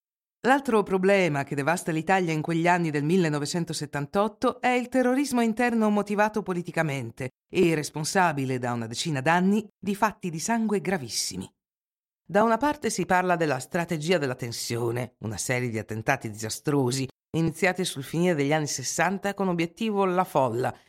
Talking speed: 145 wpm